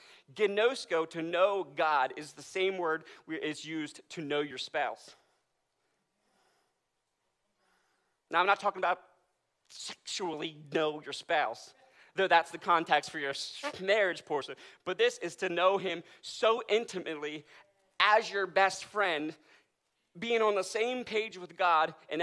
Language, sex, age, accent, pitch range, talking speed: English, male, 30-49, American, 150-190 Hz, 140 wpm